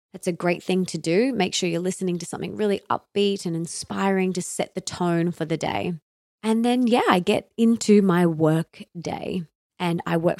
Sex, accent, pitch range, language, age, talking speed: female, Australian, 165-205 Hz, English, 20-39, 200 wpm